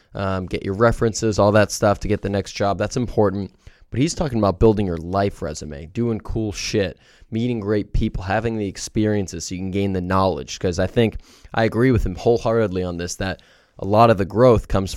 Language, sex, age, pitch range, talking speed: English, male, 20-39, 95-110 Hz, 215 wpm